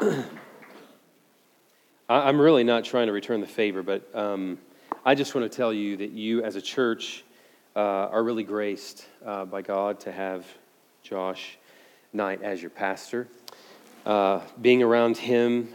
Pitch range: 95-115 Hz